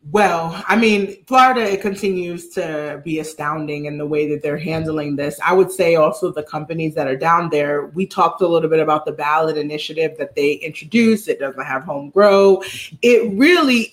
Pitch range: 175-220 Hz